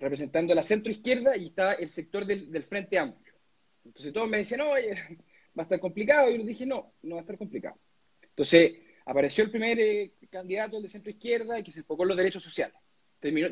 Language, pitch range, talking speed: Spanish, 155-225 Hz, 215 wpm